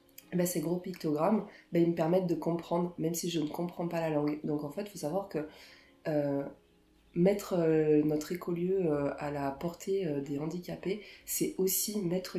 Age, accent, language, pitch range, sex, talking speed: 20-39, French, French, 150-175 Hz, female, 190 wpm